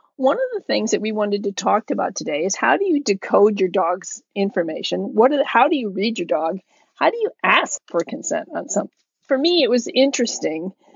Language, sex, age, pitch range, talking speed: English, female, 40-59, 195-265 Hz, 225 wpm